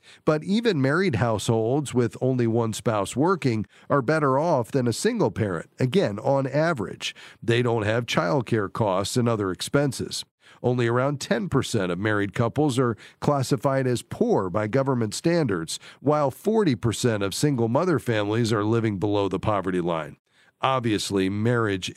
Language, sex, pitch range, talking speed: English, male, 110-145 Hz, 145 wpm